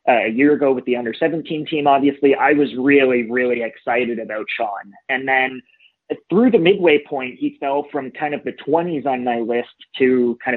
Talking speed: 200 wpm